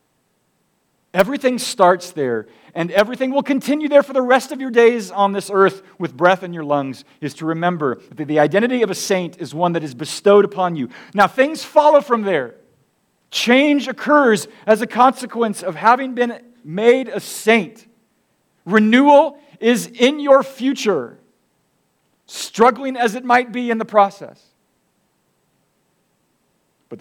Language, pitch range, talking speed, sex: English, 145-230 Hz, 150 wpm, male